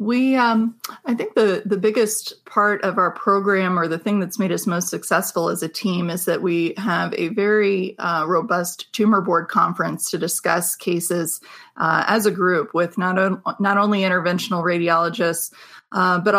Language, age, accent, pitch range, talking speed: English, 30-49, American, 175-205 Hz, 180 wpm